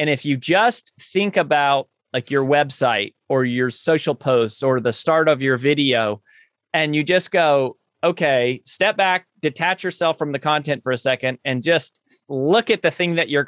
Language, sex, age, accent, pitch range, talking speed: English, male, 30-49, American, 130-170 Hz, 185 wpm